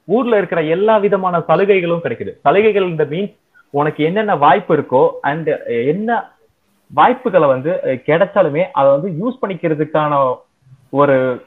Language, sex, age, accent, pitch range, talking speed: Tamil, male, 20-39, native, 140-195 Hz, 120 wpm